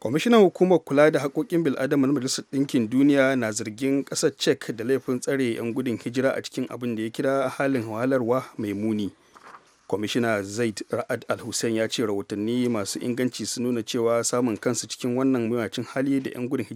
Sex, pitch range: male, 115-135 Hz